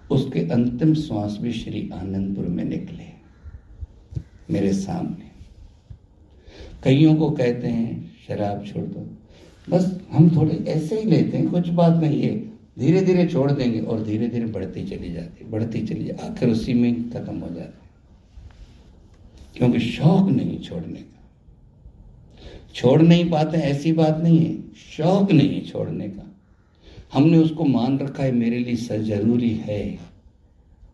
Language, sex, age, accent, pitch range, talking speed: Hindi, male, 60-79, native, 95-140 Hz, 145 wpm